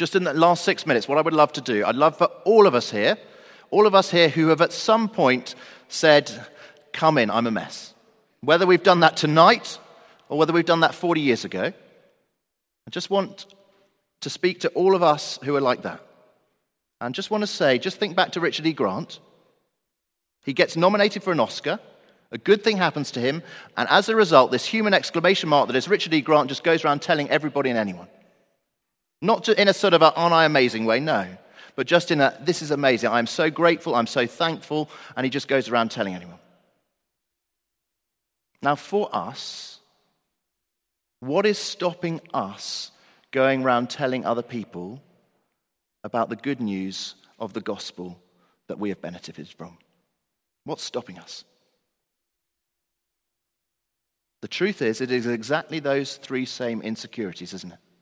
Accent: British